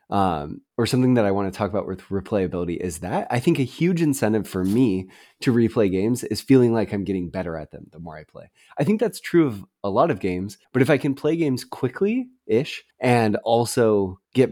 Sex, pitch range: male, 95-130 Hz